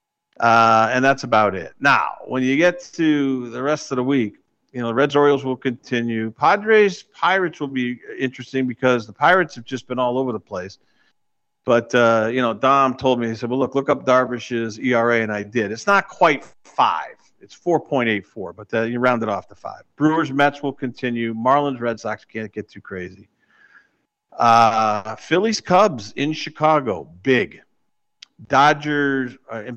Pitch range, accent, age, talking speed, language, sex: 115-145 Hz, American, 50-69, 170 wpm, English, male